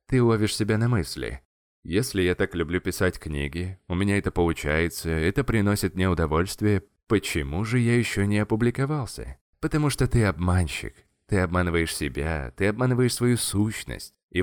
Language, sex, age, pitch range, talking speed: Russian, male, 20-39, 85-120 Hz, 155 wpm